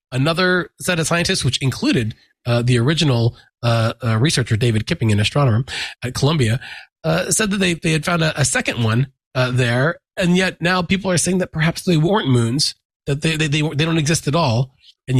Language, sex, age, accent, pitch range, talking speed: English, male, 30-49, American, 120-160 Hz, 205 wpm